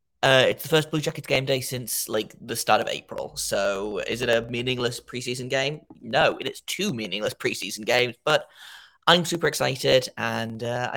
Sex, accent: male, British